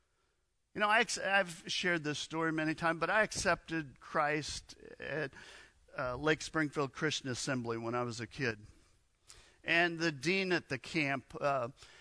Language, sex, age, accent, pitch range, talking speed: English, male, 50-69, American, 130-175 Hz, 155 wpm